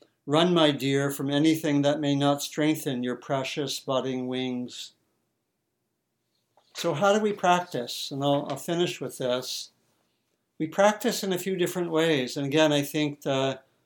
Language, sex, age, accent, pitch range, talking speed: English, male, 60-79, American, 135-160 Hz, 155 wpm